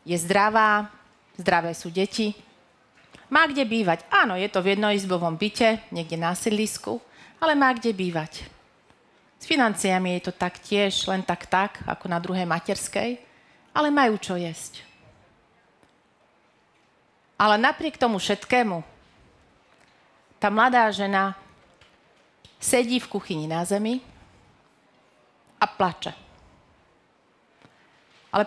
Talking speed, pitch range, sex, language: 110 wpm, 185-230 Hz, female, Slovak